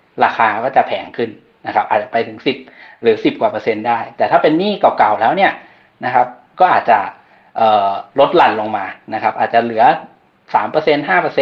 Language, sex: Thai, male